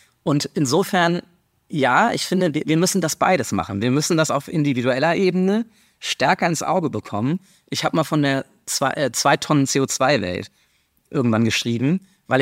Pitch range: 115-155 Hz